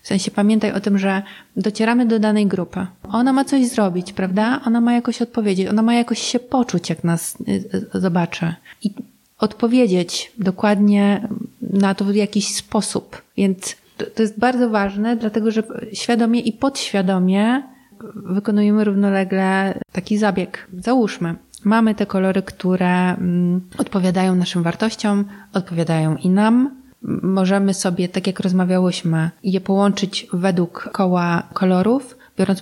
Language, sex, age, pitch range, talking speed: Polish, female, 30-49, 190-220 Hz, 130 wpm